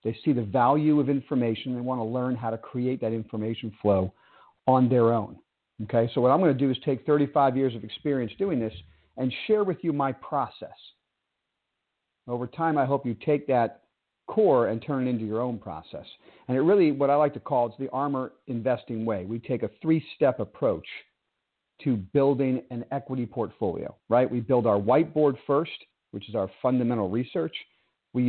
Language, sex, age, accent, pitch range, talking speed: English, male, 50-69, American, 115-140 Hz, 190 wpm